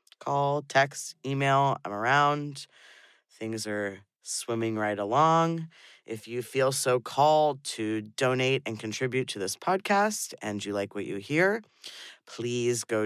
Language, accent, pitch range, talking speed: English, American, 110-140 Hz, 140 wpm